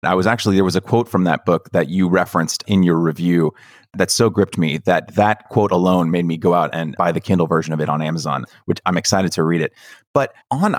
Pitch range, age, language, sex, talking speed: 85-100 Hz, 30-49, English, male, 250 wpm